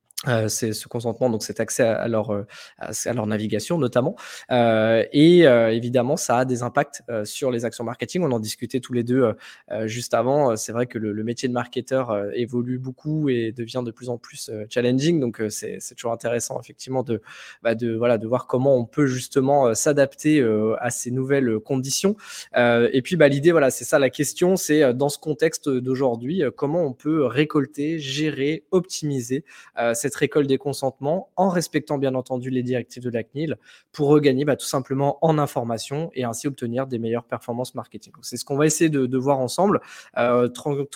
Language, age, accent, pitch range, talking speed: French, 20-39, French, 120-145 Hz, 205 wpm